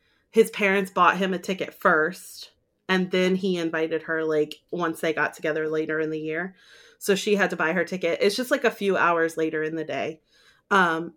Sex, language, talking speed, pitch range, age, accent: female, English, 210 wpm, 165-200 Hz, 30-49, American